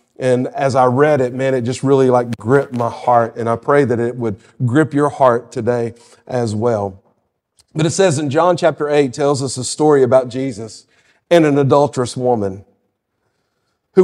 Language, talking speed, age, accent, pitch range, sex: English, 185 wpm, 40-59, American, 130-175 Hz, male